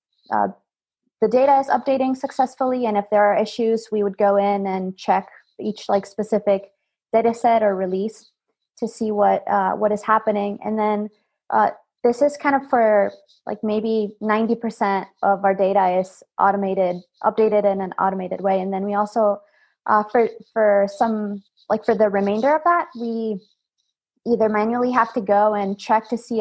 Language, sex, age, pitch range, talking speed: English, female, 20-39, 200-230 Hz, 175 wpm